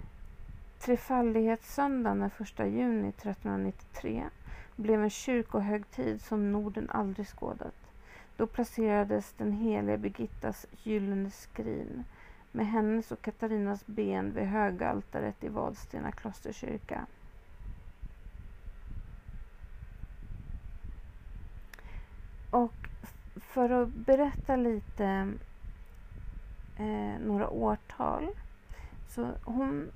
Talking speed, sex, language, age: 80 wpm, female, Swedish, 40-59